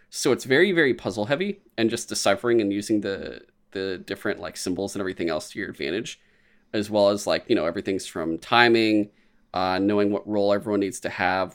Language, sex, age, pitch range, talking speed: English, male, 20-39, 95-115 Hz, 205 wpm